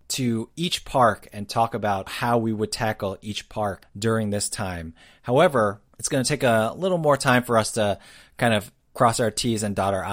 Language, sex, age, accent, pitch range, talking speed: English, male, 30-49, American, 95-130 Hz, 205 wpm